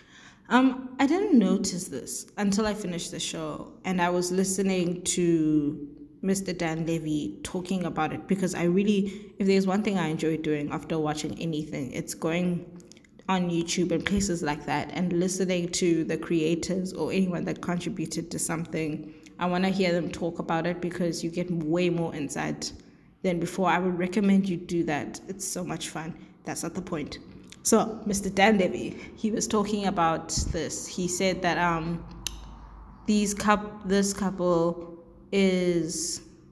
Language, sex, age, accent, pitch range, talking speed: English, female, 20-39, South African, 165-195 Hz, 165 wpm